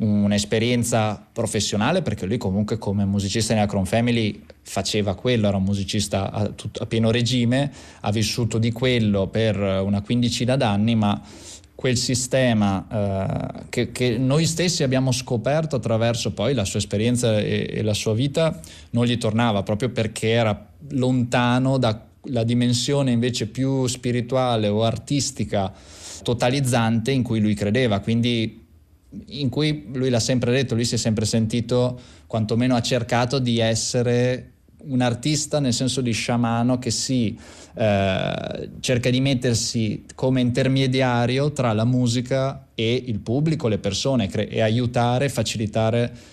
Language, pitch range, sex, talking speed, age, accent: Italian, 105-125 Hz, male, 140 wpm, 20-39, native